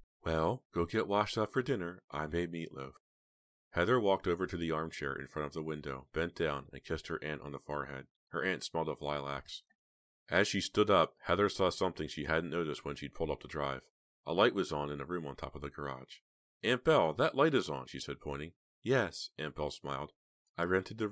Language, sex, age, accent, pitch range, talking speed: English, male, 40-59, American, 70-95 Hz, 225 wpm